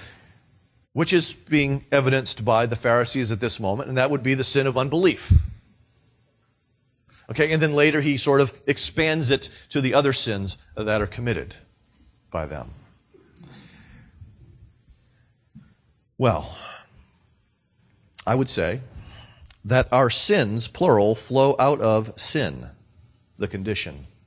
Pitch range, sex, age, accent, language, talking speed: 110-145 Hz, male, 40-59, American, English, 125 wpm